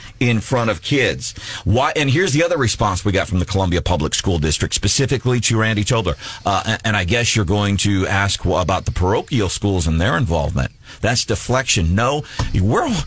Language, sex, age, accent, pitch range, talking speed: English, male, 50-69, American, 85-115 Hz, 195 wpm